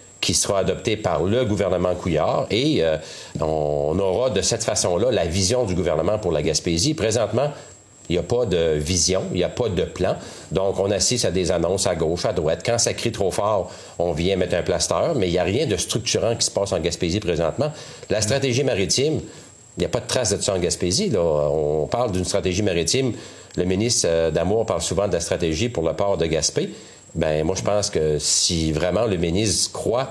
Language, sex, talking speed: French, male, 215 wpm